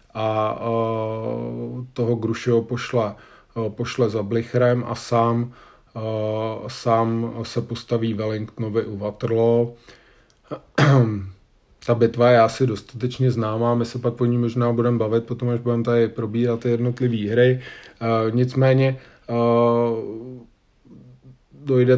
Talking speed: 115 wpm